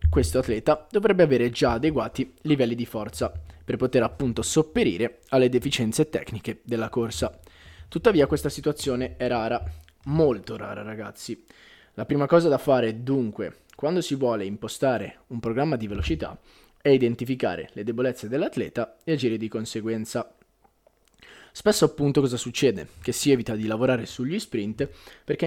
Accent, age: native, 20-39